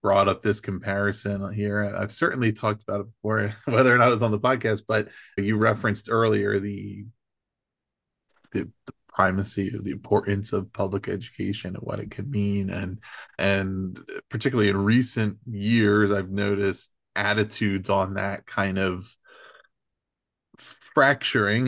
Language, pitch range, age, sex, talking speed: English, 100-110 Hz, 20-39, male, 145 wpm